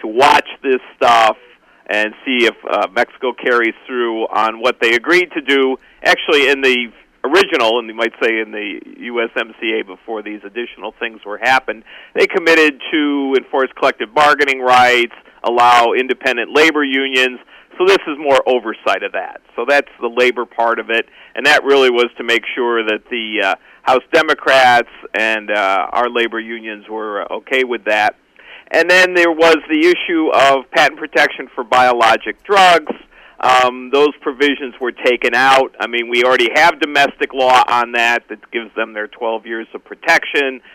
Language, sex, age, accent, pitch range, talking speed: English, male, 50-69, American, 115-145 Hz, 170 wpm